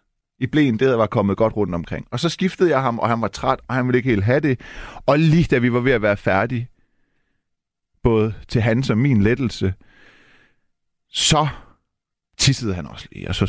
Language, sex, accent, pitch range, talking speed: Danish, male, native, 100-140 Hz, 210 wpm